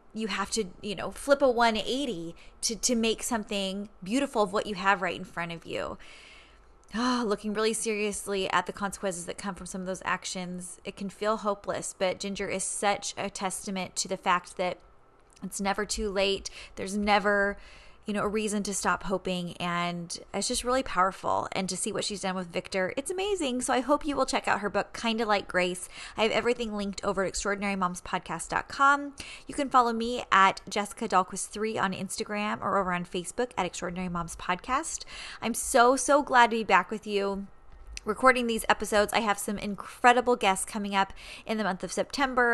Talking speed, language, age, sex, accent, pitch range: 195 wpm, English, 20-39, female, American, 185-225 Hz